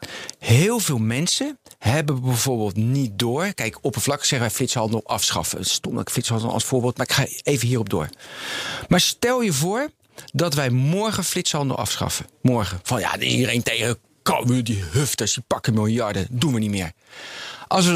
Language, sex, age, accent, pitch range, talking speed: Dutch, male, 40-59, Dutch, 120-170 Hz, 165 wpm